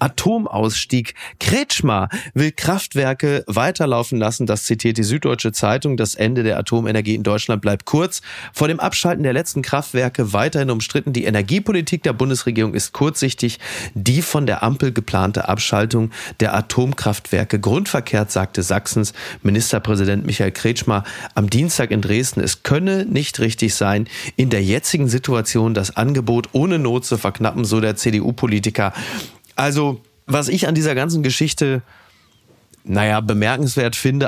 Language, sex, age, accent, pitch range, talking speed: German, male, 30-49, German, 105-140 Hz, 140 wpm